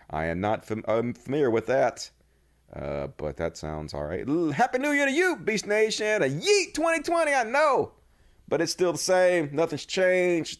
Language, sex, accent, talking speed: English, male, American, 185 wpm